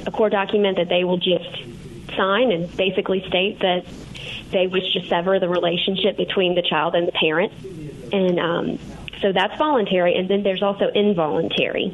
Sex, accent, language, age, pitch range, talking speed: female, American, English, 30-49, 175-210 Hz, 170 wpm